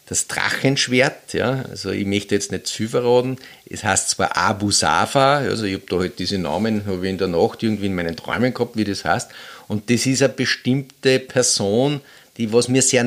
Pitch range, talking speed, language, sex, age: 105-130 Hz, 200 wpm, German, male, 50-69